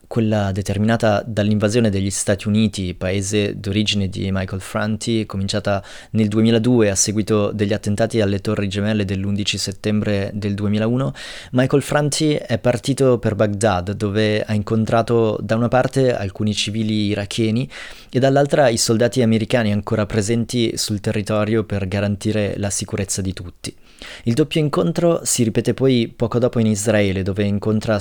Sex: male